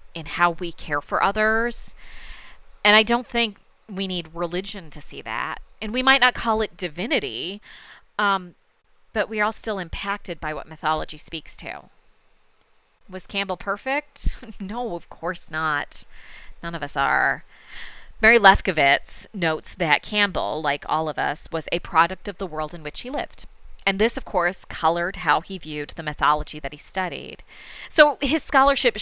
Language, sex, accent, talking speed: English, female, American, 170 wpm